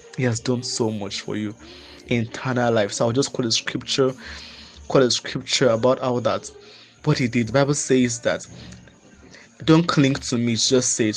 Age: 20-39